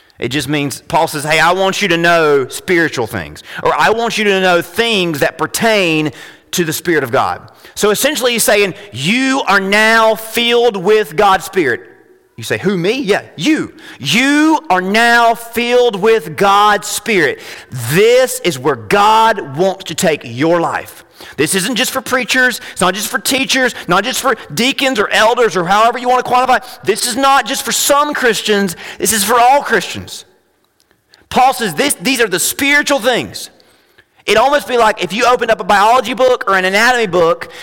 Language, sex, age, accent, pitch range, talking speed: English, male, 40-59, American, 195-255 Hz, 185 wpm